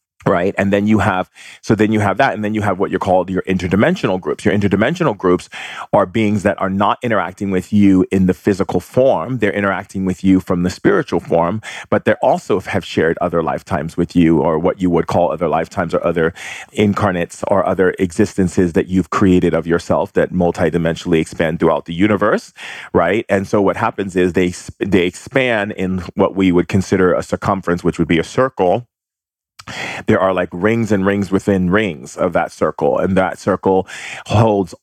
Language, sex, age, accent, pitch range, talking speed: English, male, 40-59, American, 90-100 Hz, 195 wpm